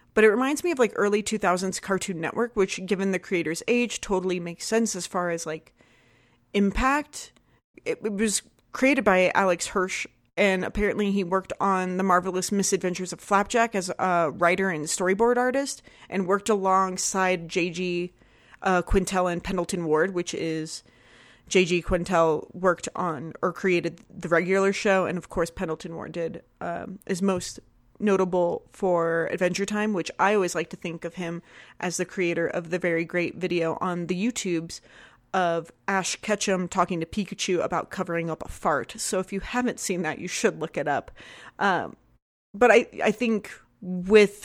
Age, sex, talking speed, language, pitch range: 30-49, female, 170 wpm, English, 170-200 Hz